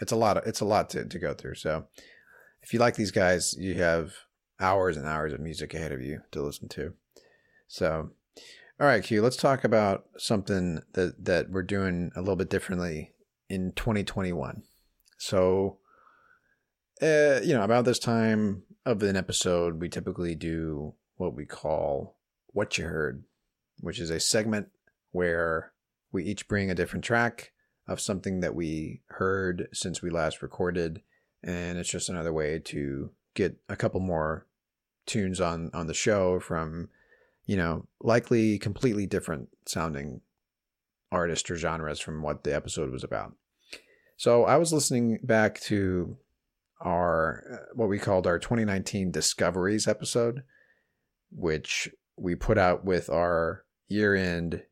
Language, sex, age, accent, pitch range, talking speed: English, male, 30-49, American, 85-110 Hz, 150 wpm